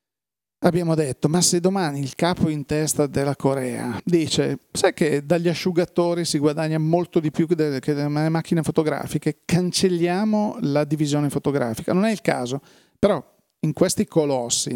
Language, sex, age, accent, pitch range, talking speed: Italian, male, 40-59, native, 140-170 Hz, 150 wpm